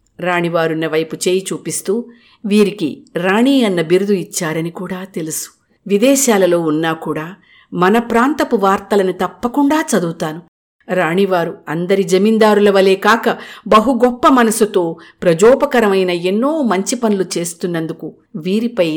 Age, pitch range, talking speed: 50-69, 175-230 Hz, 100 wpm